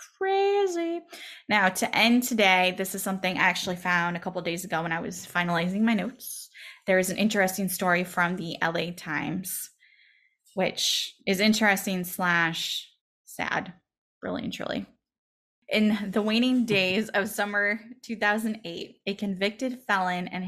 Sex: female